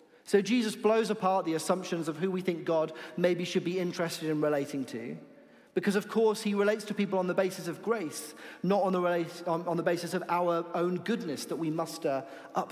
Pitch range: 145-195 Hz